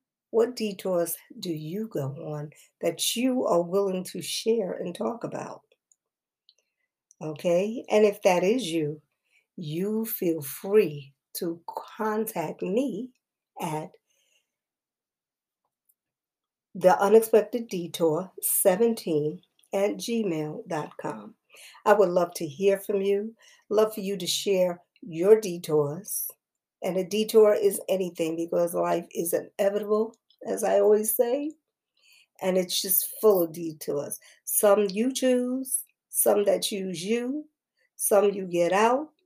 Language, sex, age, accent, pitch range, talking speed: English, female, 50-69, American, 170-220 Hz, 120 wpm